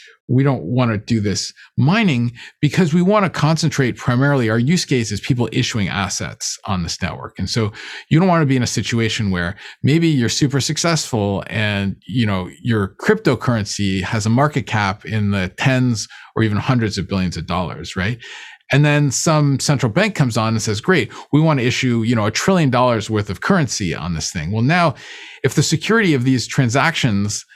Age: 40-59